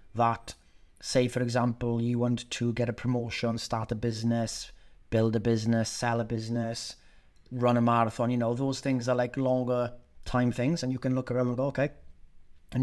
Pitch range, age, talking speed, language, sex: 115-140 Hz, 30-49, 180 wpm, English, male